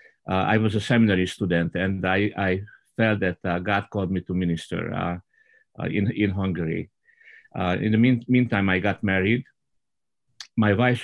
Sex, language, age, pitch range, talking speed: male, English, 50-69, 95-115 Hz, 175 wpm